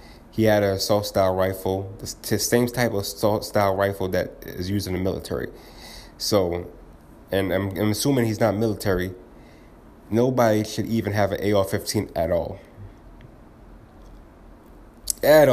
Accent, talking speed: American, 130 wpm